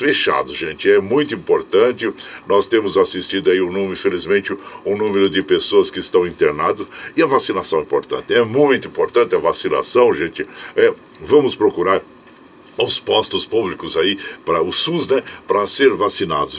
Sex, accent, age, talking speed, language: male, Brazilian, 60-79, 155 wpm, Portuguese